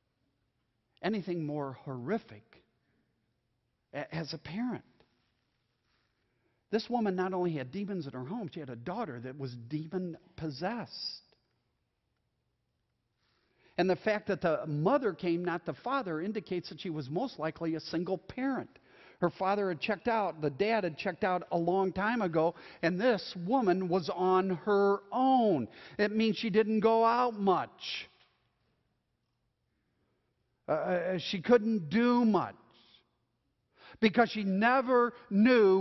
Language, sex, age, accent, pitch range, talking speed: English, male, 50-69, American, 165-225 Hz, 130 wpm